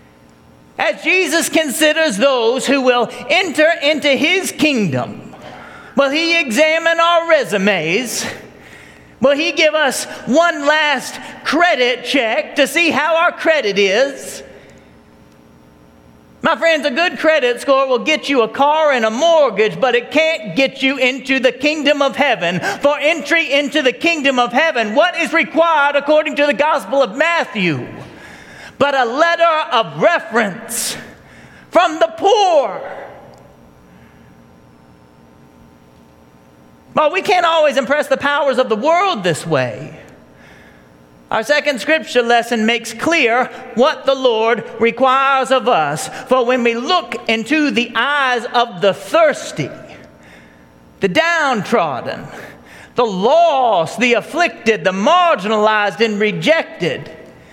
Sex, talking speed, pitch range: male, 125 wpm, 210-310 Hz